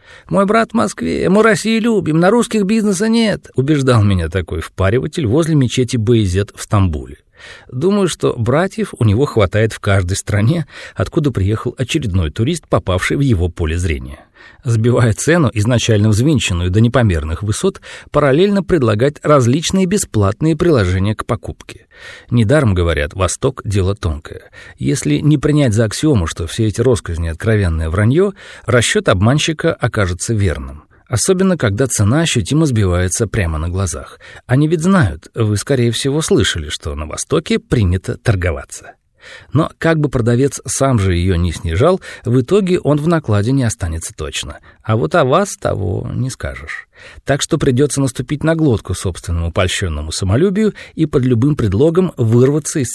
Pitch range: 100-155 Hz